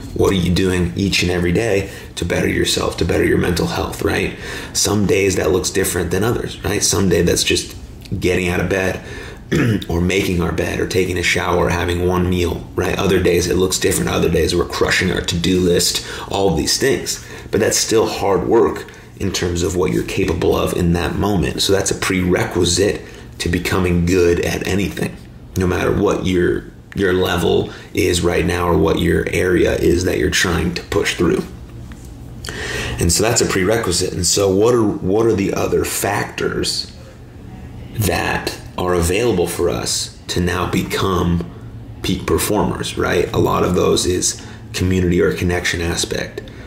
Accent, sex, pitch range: American, male, 85-95 Hz